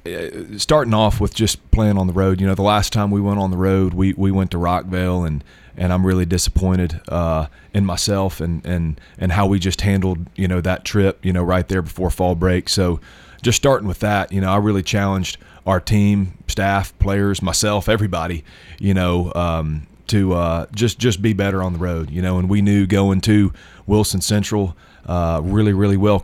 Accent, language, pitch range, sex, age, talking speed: American, English, 90-100 Hz, male, 30-49, 205 wpm